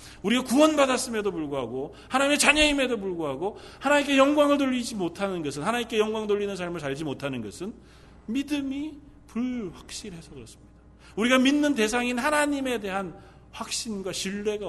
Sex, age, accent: male, 40-59, native